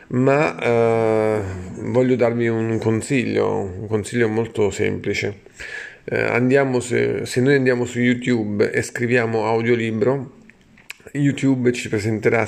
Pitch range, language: 110-125 Hz, Italian